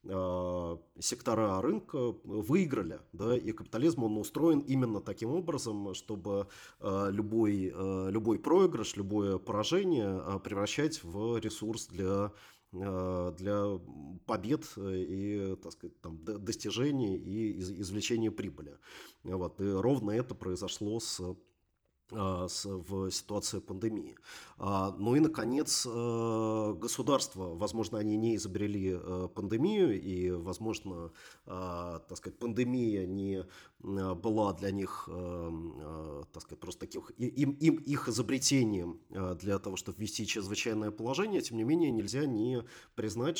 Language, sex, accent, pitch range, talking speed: Russian, male, native, 95-115 Hz, 95 wpm